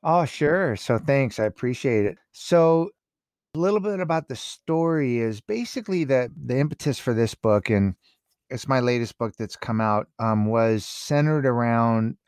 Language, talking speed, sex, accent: English, 165 wpm, male, American